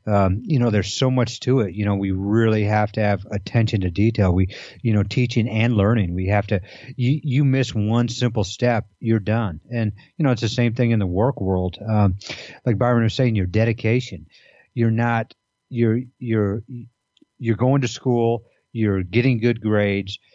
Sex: male